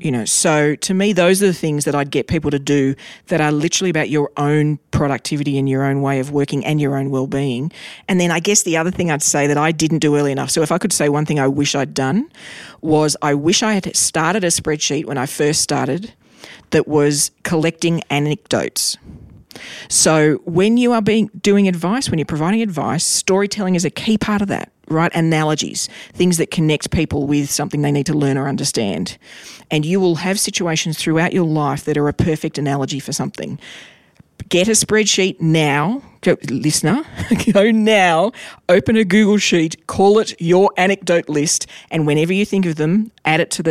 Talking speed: 200 wpm